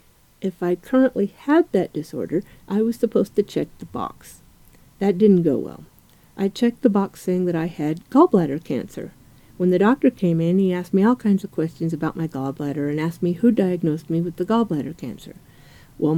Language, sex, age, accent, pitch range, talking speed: English, female, 50-69, American, 160-215 Hz, 195 wpm